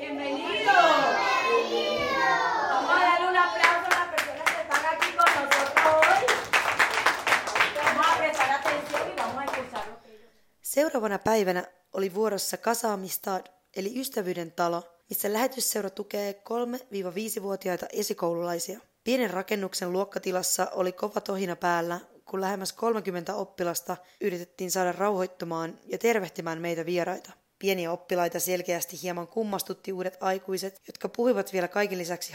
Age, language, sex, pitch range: 20-39, Finnish, female, 180-225 Hz